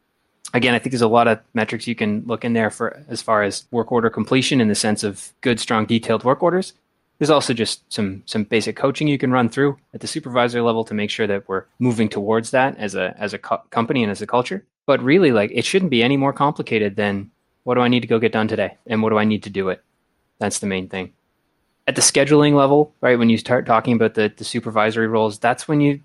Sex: male